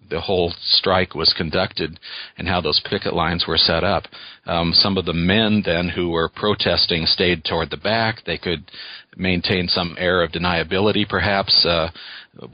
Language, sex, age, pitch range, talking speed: English, male, 40-59, 85-100 Hz, 165 wpm